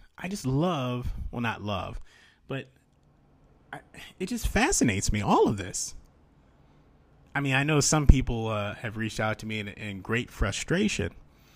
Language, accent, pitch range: English, American, 105-125 Hz